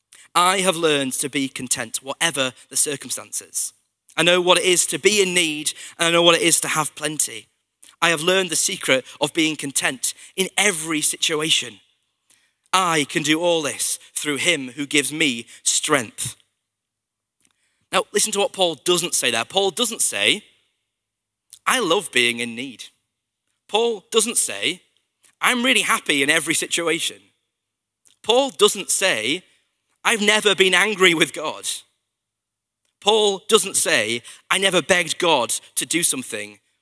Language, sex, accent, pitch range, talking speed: English, male, British, 115-180 Hz, 150 wpm